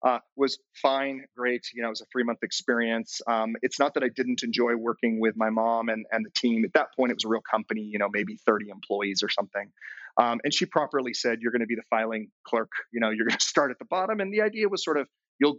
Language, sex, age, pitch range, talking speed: English, male, 30-49, 110-135 Hz, 270 wpm